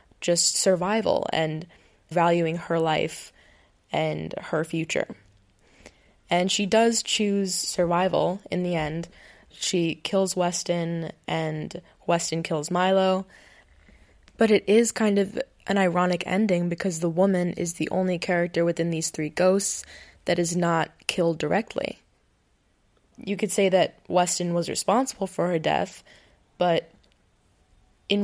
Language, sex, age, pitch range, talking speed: English, female, 20-39, 160-190 Hz, 125 wpm